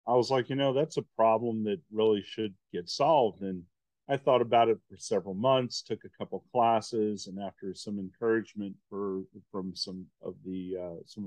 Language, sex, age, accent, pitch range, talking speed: English, male, 40-59, American, 95-115 Hz, 195 wpm